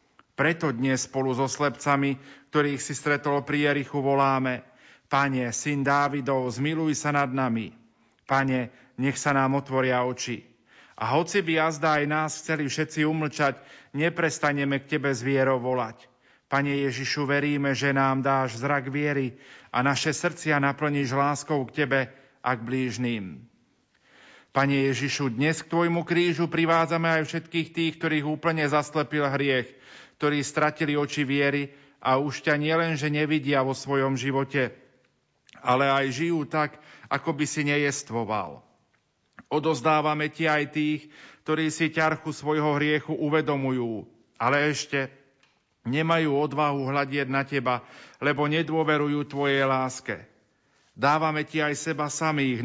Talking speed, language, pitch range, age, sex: 135 wpm, Slovak, 135-150 Hz, 40-59, male